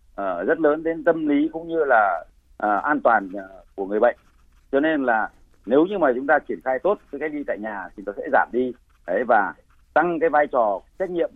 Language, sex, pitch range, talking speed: Vietnamese, male, 130-185 Hz, 210 wpm